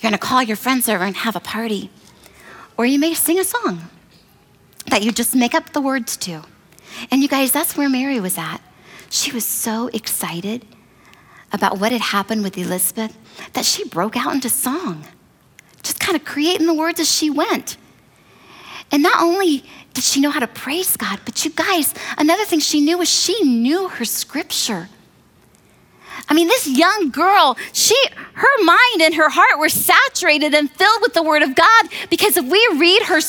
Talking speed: 185 wpm